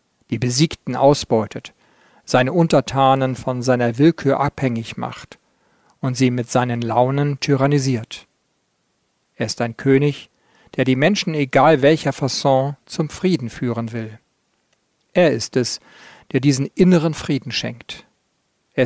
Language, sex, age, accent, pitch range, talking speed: German, male, 50-69, German, 125-150 Hz, 125 wpm